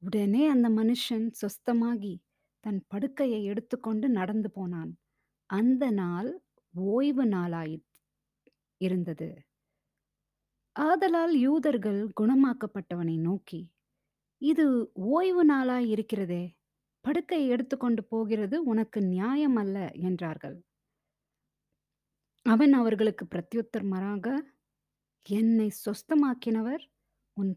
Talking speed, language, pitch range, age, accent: 75 wpm, Tamil, 185-260 Hz, 20-39, native